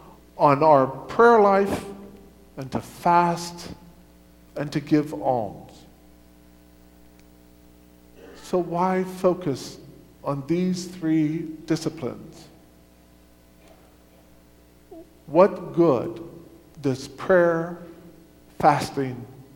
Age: 50-69